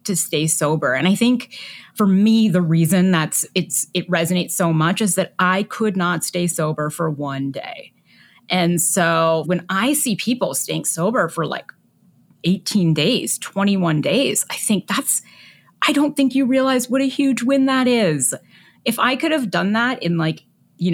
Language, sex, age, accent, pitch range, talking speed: English, female, 30-49, American, 160-210 Hz, 180 wpm